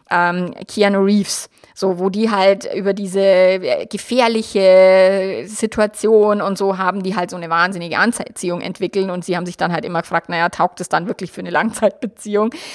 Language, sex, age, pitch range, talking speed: German, female, 20-39, 190-255 Hz, 170 wpm